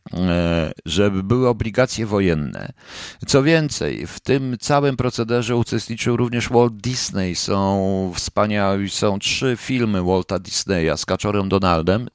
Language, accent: Polish, native